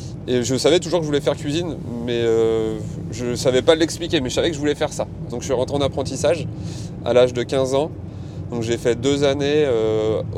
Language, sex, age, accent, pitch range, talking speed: French, male, 20-39, French, 115-150 Hz, 235 wpm